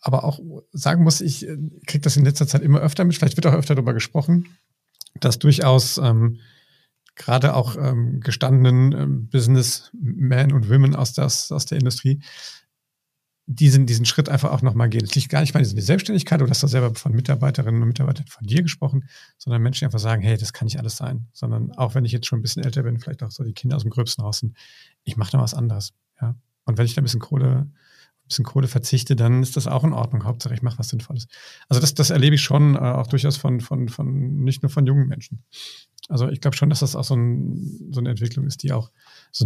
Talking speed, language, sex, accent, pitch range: 225 wpm, German, male, German, 125-150 Hz